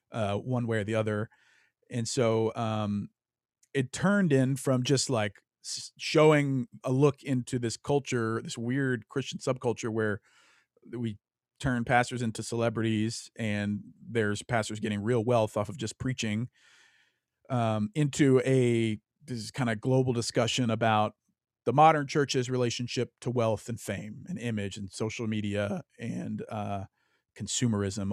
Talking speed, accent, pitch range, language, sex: 145 wpm, American, 110-125 Hz, English, male